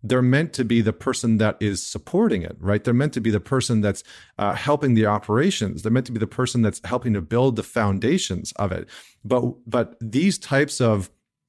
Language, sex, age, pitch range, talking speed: English, male, 40-59, 105-130 Hz, 215 wpm